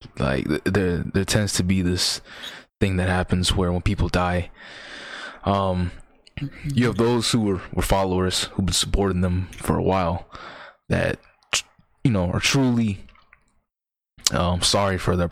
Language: English